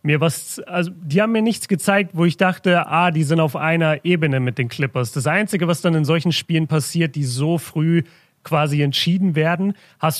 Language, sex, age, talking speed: German, male, 40-59, 205 wpm